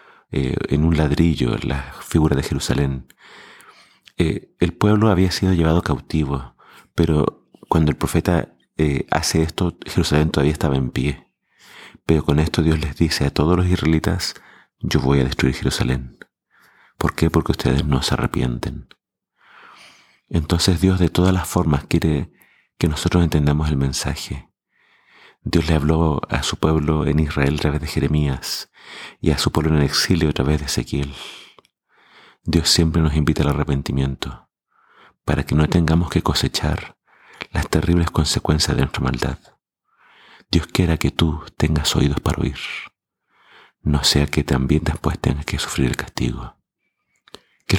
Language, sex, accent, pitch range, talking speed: Spanish, male, Argentinian, 70-85 Hz, 155 wpm